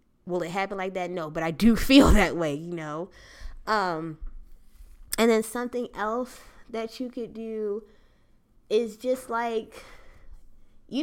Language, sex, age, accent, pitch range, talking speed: English, female, 20-39, American, 180-240 Hz, 145 wpm